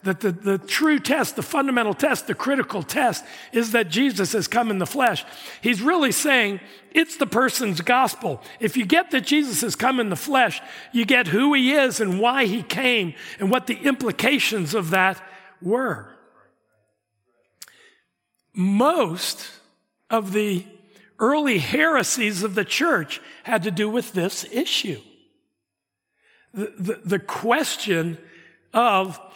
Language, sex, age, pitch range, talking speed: English, male, 60-79, 185-250 Hz, 145 wpm